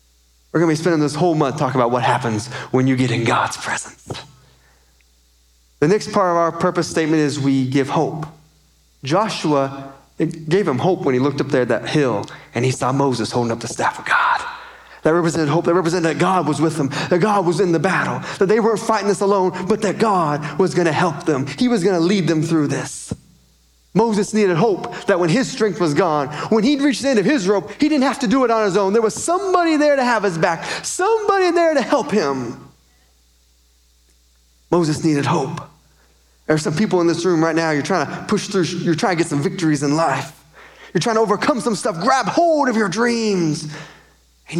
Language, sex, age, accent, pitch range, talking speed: English, male, 30-49, American, 140-210 Hz, 220 wpm